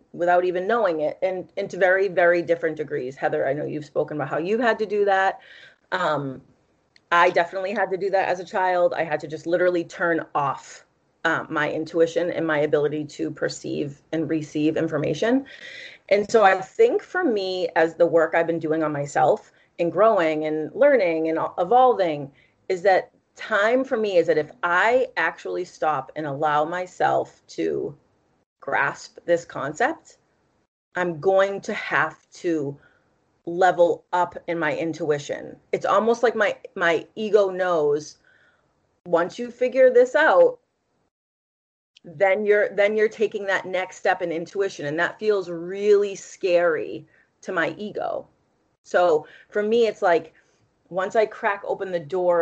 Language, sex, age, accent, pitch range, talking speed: English, female, 30-49, American, 165-220 Hz, 160 wpm